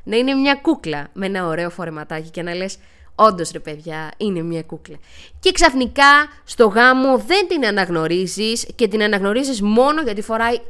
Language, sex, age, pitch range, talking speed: Greek, female, 20-39, 190-290 Hz, 170 wpm